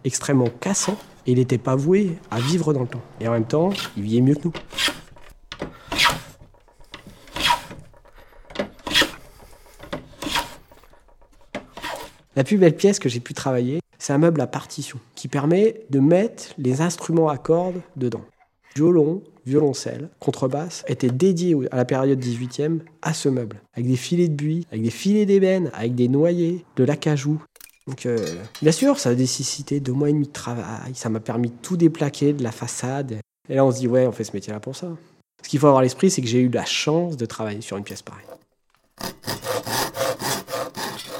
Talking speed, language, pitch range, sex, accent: 175 wpm, French, 125-165 Hz, male, French